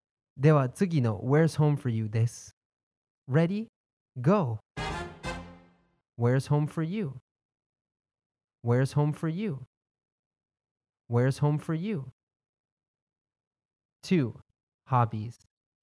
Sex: male